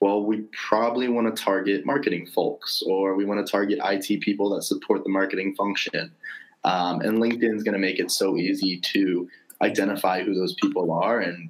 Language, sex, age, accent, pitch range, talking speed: English, male, 20-39, American, 95-115 Hz, 195 wpm